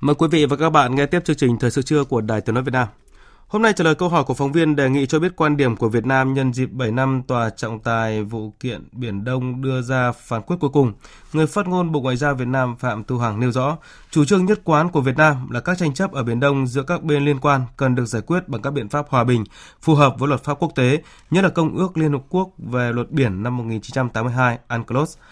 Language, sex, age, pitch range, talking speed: Vietnamese, male, 20-39, 120-150 Hz, 275 wpm